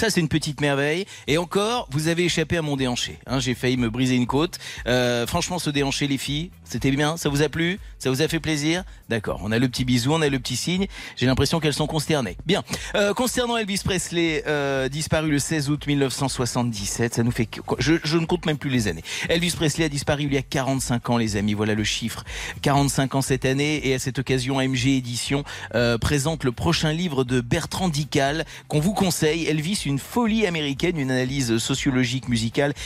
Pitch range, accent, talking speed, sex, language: 125-160 Hz, French, 215 wpm, male, French